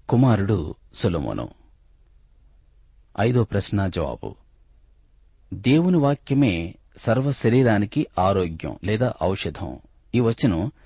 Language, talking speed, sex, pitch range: Telugu, 60 wpm, male, 70-115 Hz